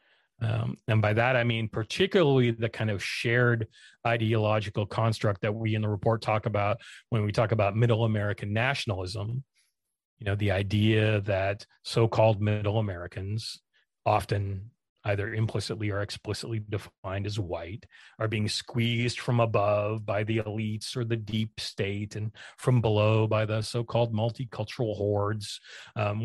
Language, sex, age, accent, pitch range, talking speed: English, male, 40-59, American, 105-115 Hz, 145 wpm